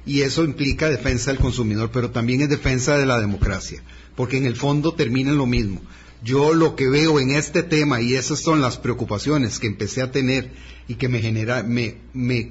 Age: 40-59